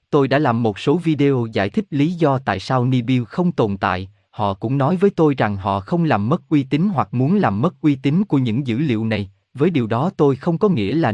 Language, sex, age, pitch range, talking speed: Vietnamese, male, 20-39, 115-160 Hz, 255 wpm